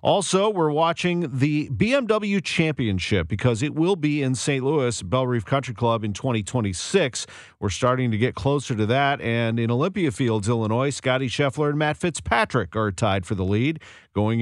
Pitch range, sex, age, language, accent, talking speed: 115-145 Hz, male, 40-59, English, American, 175 wpm